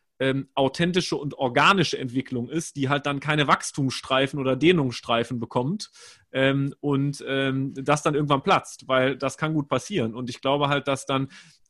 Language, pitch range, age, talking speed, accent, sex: German, 135-160 Hz, 30-49, 165 wpm, German, male